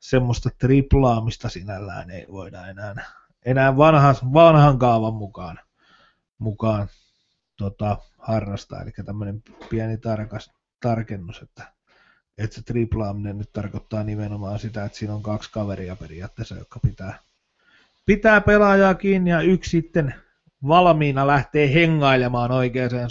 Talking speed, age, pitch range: 115 wpm, 30-49, 110-165 Hz